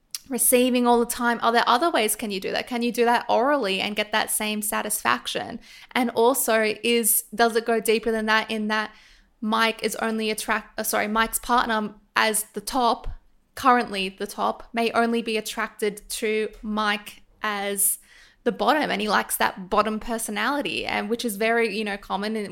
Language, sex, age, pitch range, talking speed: English, female, 10-29, 215-235 Hz, 185 wpm